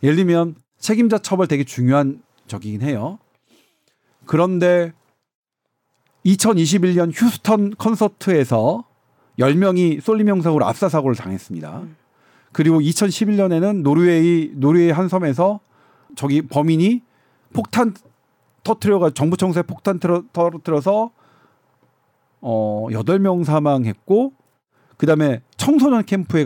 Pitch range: 135-195 Hz